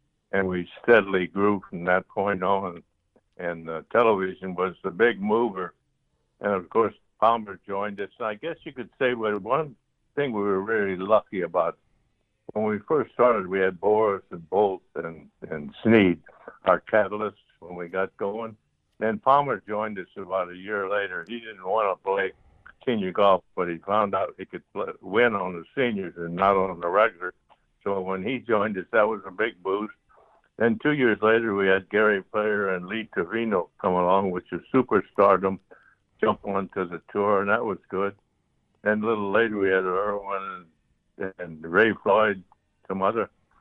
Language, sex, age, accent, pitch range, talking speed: English, male, 60-79, American, 90-110 Hz, 180 wpm